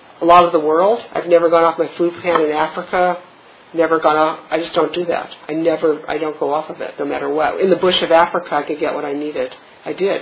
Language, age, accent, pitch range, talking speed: English, 50-69, American, 160-195 Hz, 270 wpm